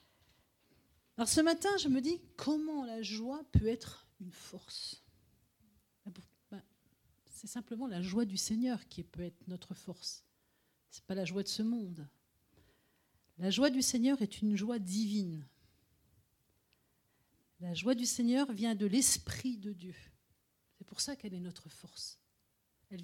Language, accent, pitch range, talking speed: French, French, 165-230 Hz, 150 wpm